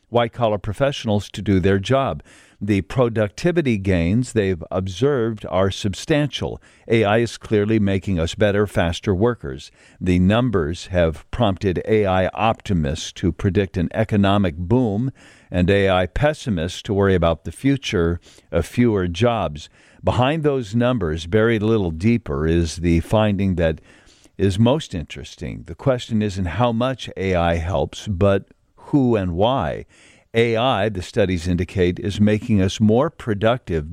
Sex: male